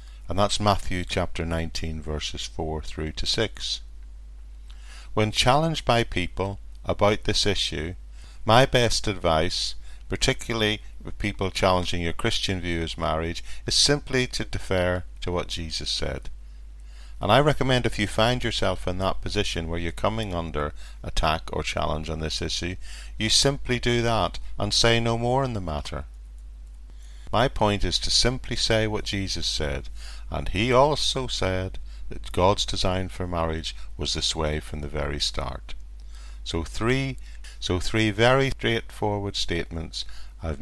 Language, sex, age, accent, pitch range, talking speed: English, male, 50-69, British, 70-105 Hz, 150 wpm